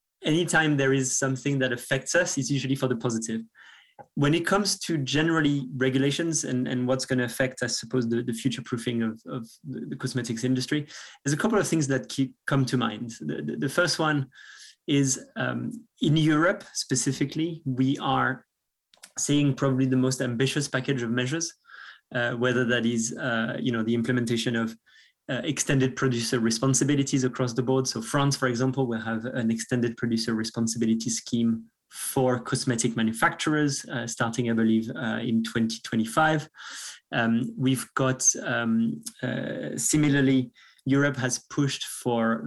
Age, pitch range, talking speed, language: 20-39, 115-140 Hz, 155 wpm, English